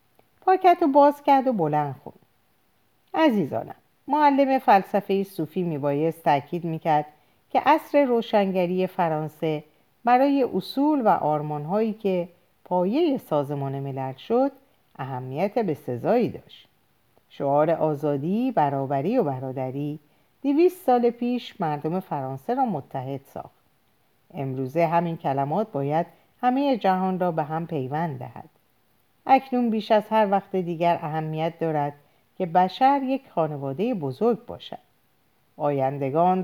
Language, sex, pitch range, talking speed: Persian, female, 150-235 Hz, 115 wpm